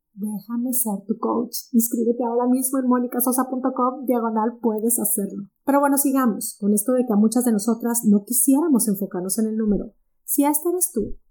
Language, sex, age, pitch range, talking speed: Spanish, female, 30-49, 225-280 Hz, 175 wpm